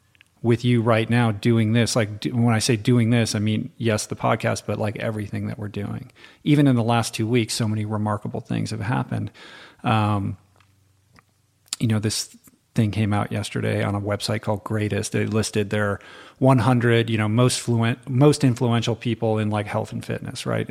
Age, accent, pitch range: 40-59, American, 105-120 Hz